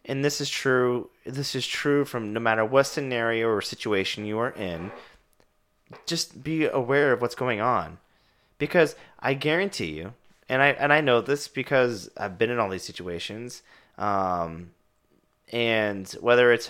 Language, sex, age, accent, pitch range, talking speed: English, male, 30-49, American, 110-140 Hz, 160 wpm